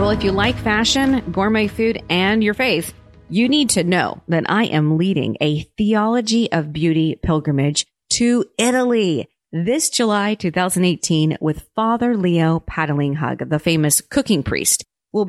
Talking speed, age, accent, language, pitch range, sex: 145 wpm, 30-49, American, English, 150-205 Hz, female